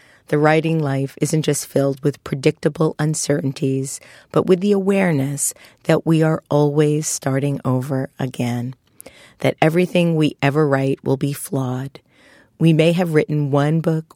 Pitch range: 130-150 Hz